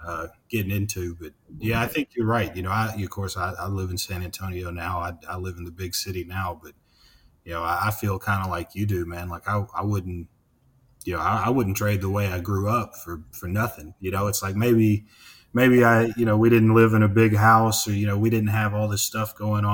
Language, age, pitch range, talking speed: English, 30-49, 95-110 Hz, 260 wpm